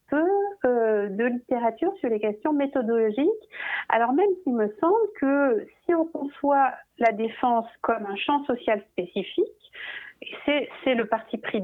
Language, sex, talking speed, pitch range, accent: French, female, 145 wpm, 215-315 Hz, French